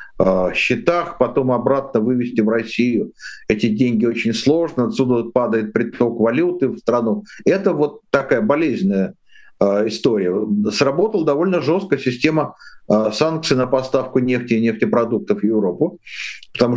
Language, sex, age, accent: Russian, male, 50-69, native